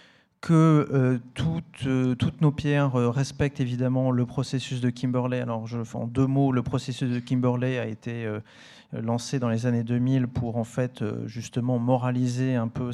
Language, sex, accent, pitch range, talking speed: French, male, French, 120-140 Hz, 165 wpm